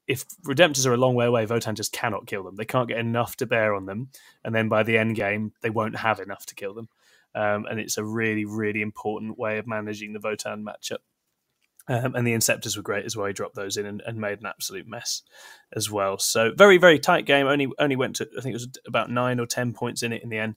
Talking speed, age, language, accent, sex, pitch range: 260 wpm, 20-39, English, British, male, 110-125 Hz